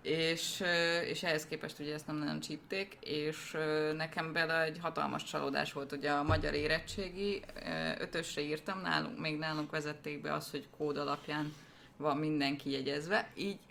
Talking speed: 155 wpm